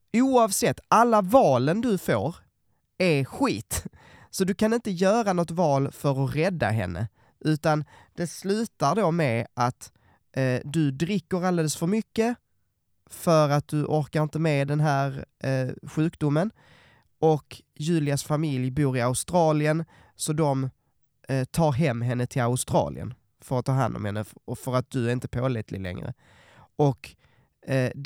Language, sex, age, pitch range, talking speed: Swedish, male, 20-39, 120-165 Hz, 150 wpm